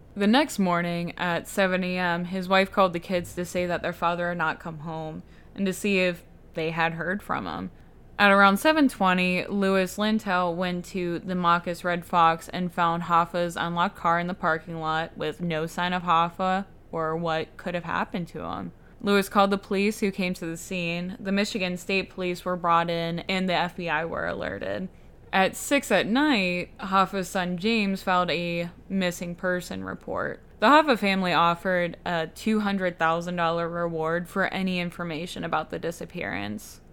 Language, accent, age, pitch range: English, American, 10-29, 170-195 Hz